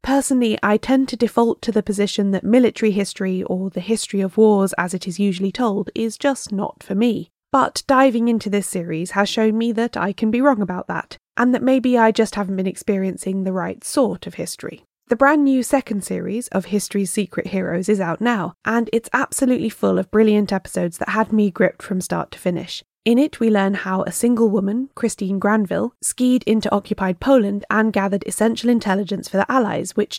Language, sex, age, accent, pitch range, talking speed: English, female, 10-29, British, 195-230 Hz, 205 wpm